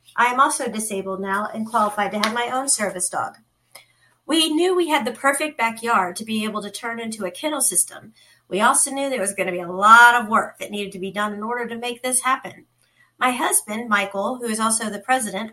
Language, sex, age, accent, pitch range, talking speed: English, female, 40-59, American, 205-270 Hz, 230 wpm